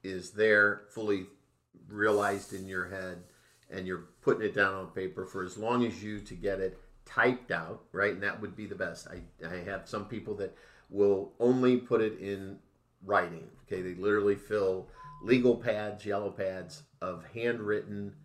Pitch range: 95-110 Hz